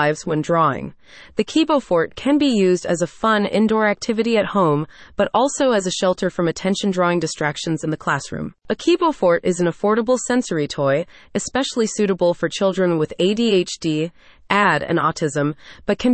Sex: female